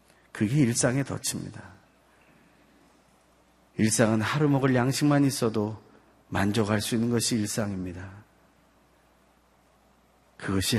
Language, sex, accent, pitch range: Korean, male, native, 95-120 Hz